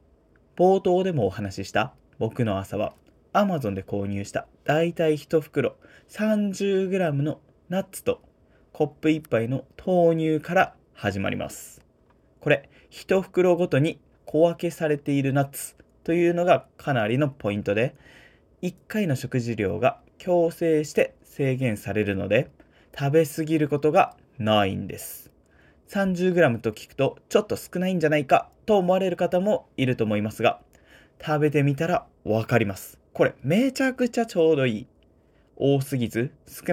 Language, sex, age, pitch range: Japanese, male, 20-39, 115-175 Hz